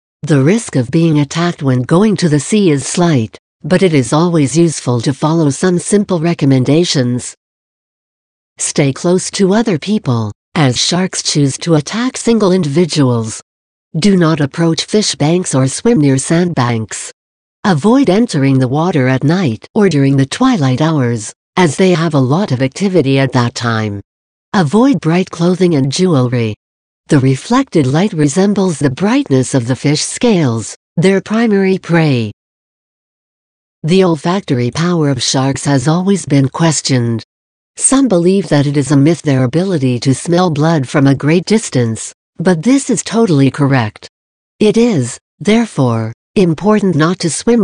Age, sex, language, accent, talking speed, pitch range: 60-79, female, English, American, 150 wpm, 130-185 Hz